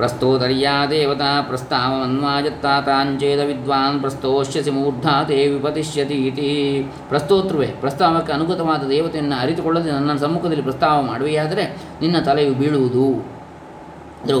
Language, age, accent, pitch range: Kannada, 20-39, native, 135-155 Hz